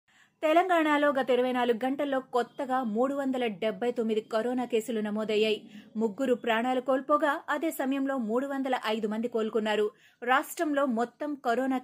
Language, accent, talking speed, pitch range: Telugu, native, 130 wpm, 225-265 Hz